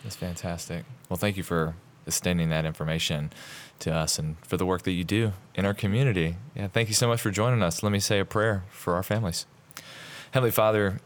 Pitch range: 95-125 Hz